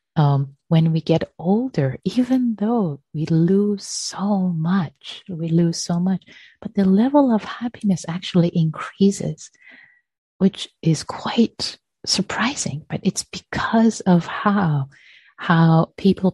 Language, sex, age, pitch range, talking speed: English, female, 30-49, 150-195 Hz, 120 wpm